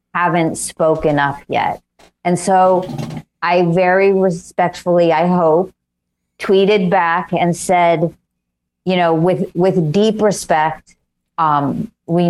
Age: 40-59